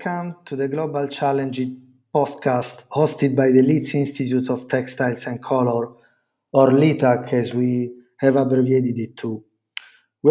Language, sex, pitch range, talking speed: English, male, 135-155 Hz, 140 wpm